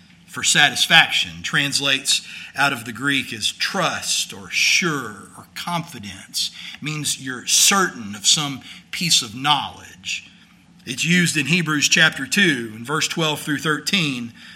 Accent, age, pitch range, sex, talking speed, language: American, 40-59, 150-190 Hz, male, 130 wpm, English